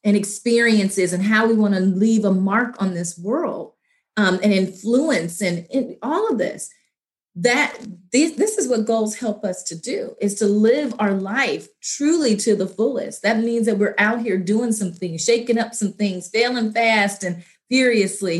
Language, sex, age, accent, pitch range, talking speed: English, female, 30-49, American, 185-230 Hz, 185 wpm